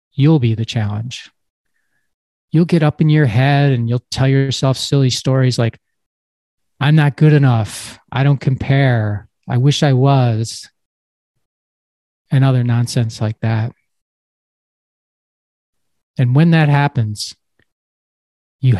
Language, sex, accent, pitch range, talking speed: English, male, American, 110-140 Hz, 120 wpm